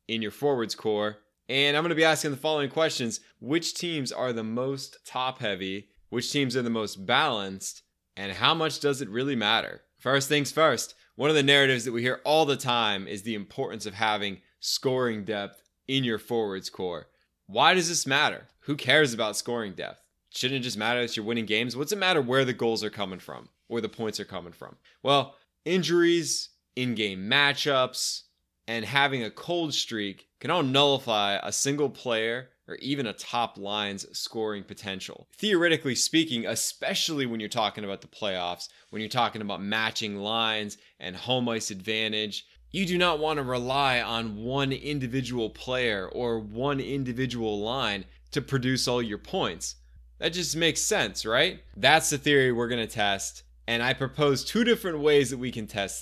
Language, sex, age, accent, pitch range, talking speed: English, male, 20-39, American, 105-140 Hz, 180 wpm